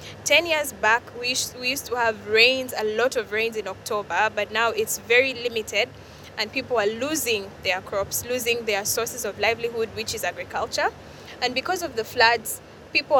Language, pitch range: English, 220-270 Hz